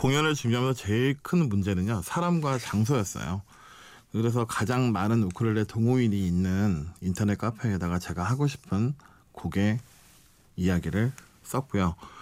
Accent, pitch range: native, 100-135 Hz